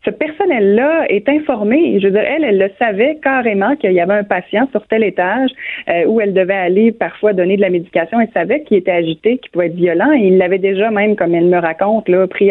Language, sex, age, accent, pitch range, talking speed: French, female, 30-49, Canadian, 180-225 Hz, 240 wpm